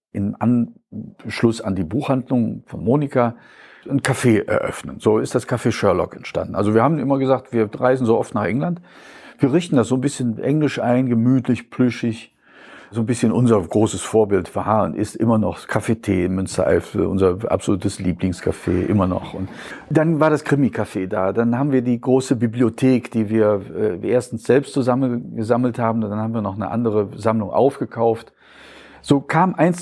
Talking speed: 175 wpm